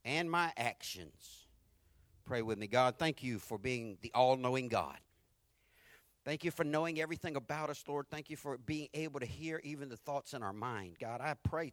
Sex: male